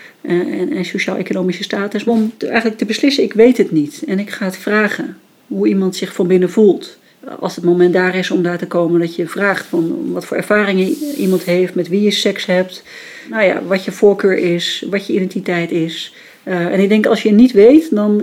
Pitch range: 180-235 Hz